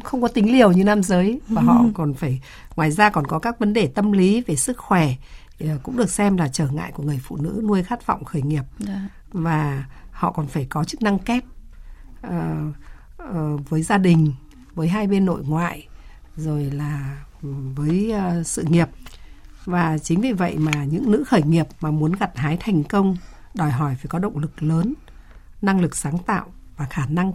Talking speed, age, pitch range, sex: 195 wpm, 60-79, 150-205 Hz, female